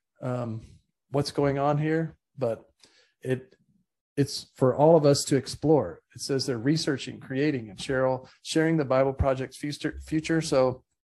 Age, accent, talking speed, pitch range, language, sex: 40-59, American, 150 wpm, 120-145 Hz, English, male